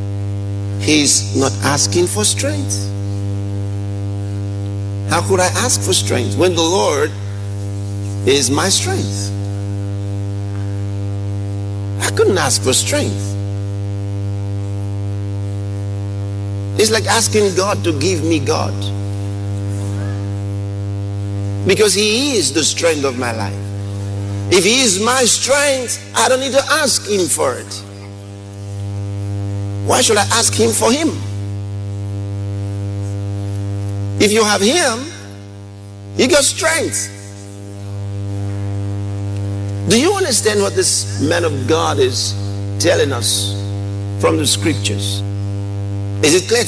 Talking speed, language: 105 wpm, English